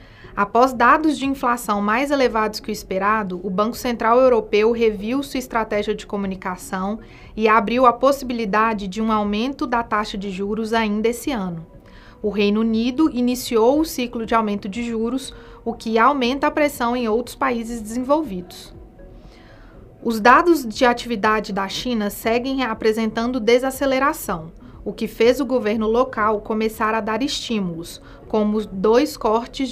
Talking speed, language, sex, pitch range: 145 wpm, Portuguese, female, 210-250 Hz